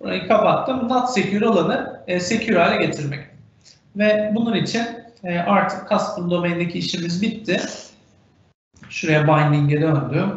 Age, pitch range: 40-59, 155-255 Hz